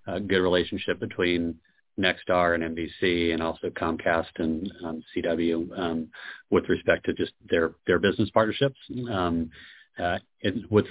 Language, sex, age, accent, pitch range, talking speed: English, male, 40-59, American, 80-90 Hz, 140 wpm